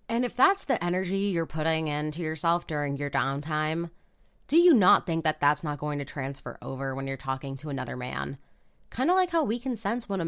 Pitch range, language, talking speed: 150-225 Hz, English, 220 wpm